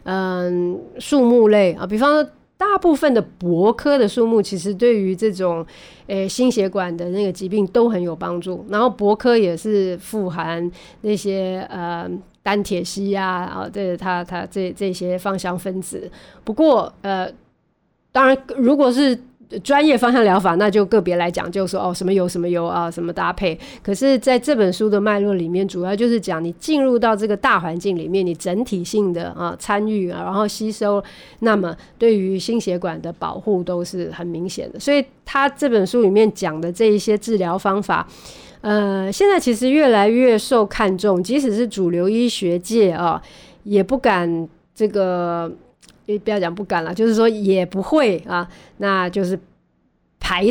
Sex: female